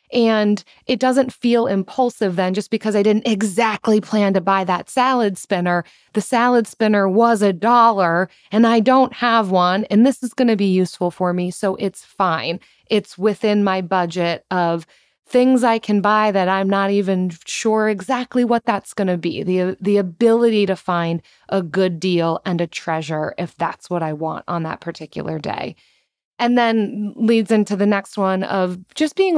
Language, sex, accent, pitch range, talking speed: English, female, American, 175-215 Hz, 185 wpm